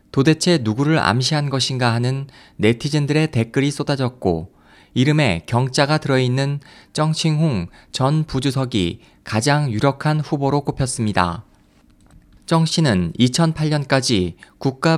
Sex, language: male, Korean